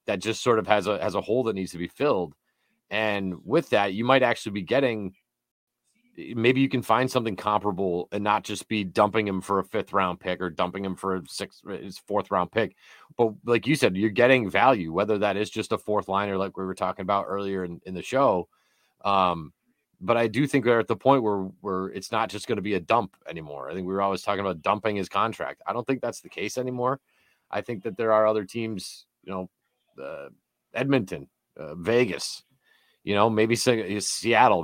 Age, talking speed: 30-49, 220 wpm